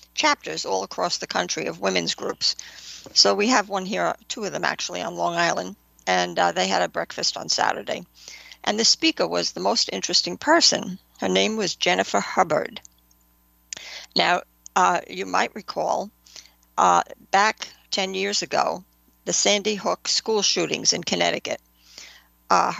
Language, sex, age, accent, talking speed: English, female, 60-79, American, 155 wpm